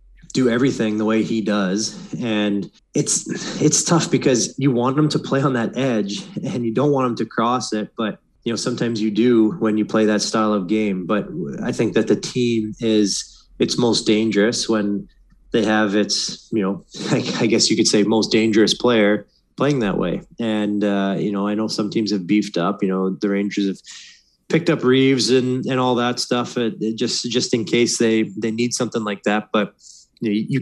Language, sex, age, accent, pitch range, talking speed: English, male, 20-39, American, 105-120 Hz, 210 wpm